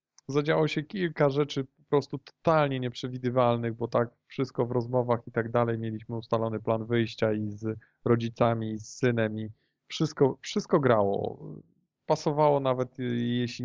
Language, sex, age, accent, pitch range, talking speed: Polish, male, 20-39, native, 110-130 Hz, 145 wpm